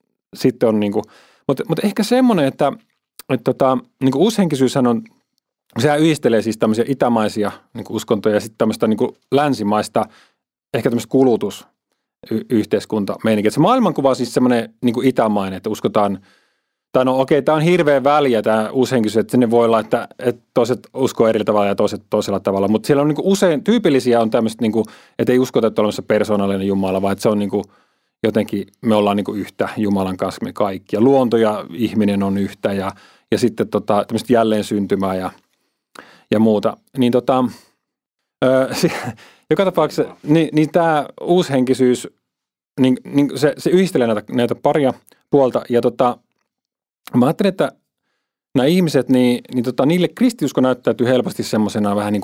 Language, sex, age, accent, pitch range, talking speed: Finnish, male, 30-49, native, 105-135 Hz, 160 wpm